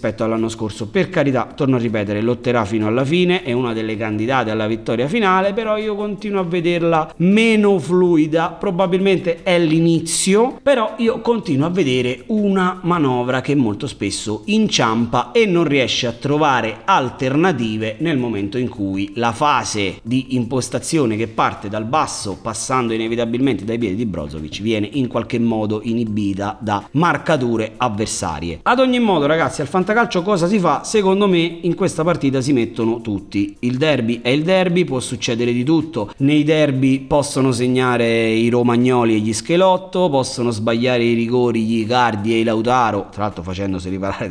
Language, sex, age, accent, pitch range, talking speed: Italian, male, 30-49, native, 115-175 Hz, 165 wpm